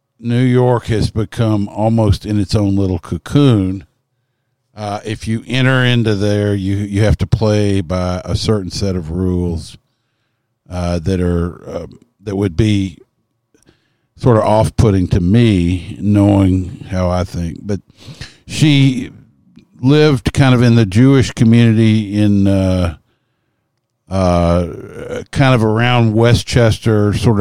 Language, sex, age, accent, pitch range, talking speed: English, male, 50-69, American, 100-125 Hz, 130 wpm